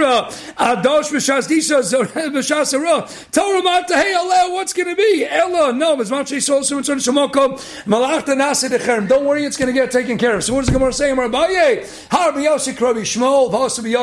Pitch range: 245-320 Hz